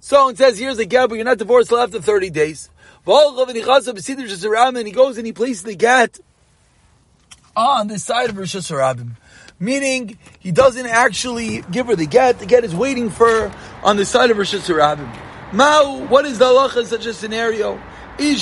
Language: English